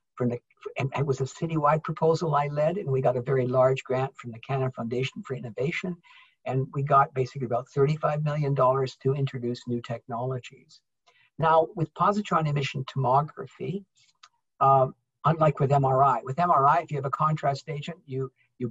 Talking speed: 165 wpm